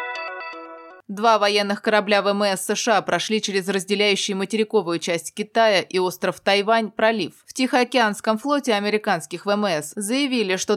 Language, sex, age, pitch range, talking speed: Russian, female, 20-39, 190-230 Hz, 125 wpm